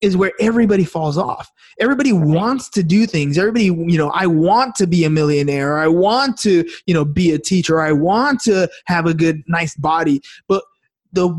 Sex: male